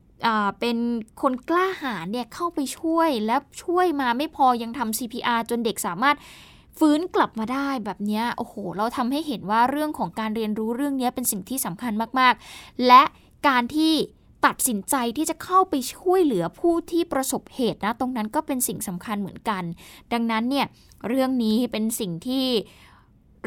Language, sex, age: Thai, female, 10-29